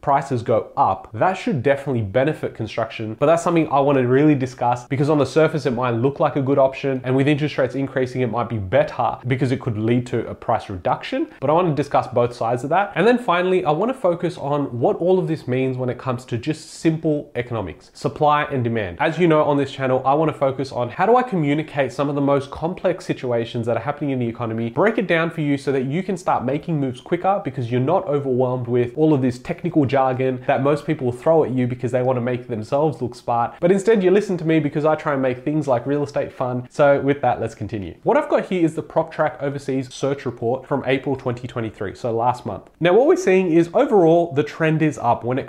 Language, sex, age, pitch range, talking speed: English, male, 20-39, 120-155 Hz, 245 wpm